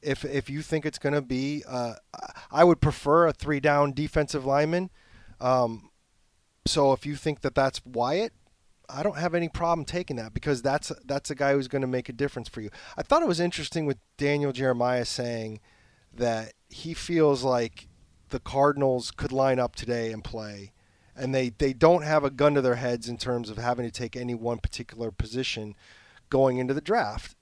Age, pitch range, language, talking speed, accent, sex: 30-49, 120-155 Hz, English, 195 wpm, American, male